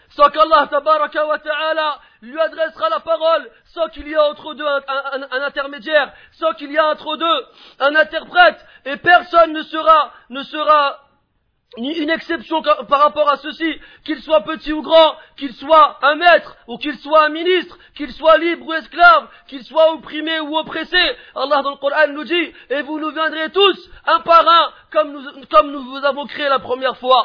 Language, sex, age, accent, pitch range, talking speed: French, male, 40-59, French, 290-320 Hz, 200 wpm